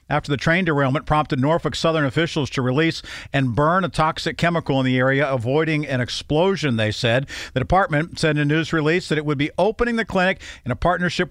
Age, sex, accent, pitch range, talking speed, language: 50-69, male, American, 130-170 Hz, 210 wpm, English